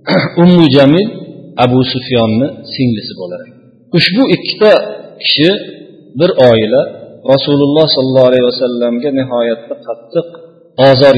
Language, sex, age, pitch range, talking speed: Bulgarian, male, 40-59, 120-150 Hz, 105 wpm